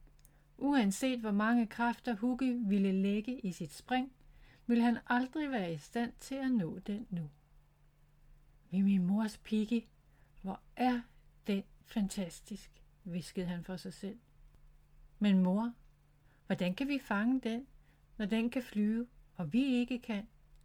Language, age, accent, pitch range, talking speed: Danish, 60-79, native, 145-235 Hz, 140 wpm